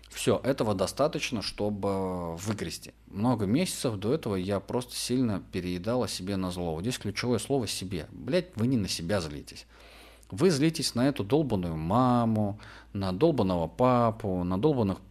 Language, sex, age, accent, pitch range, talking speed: Russian, male, 30-49, native, 85-115 Hz, 145 wpm